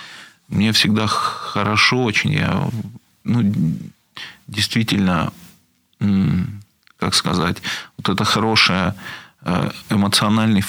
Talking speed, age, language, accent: 75 wpm, 40-59, Russian, native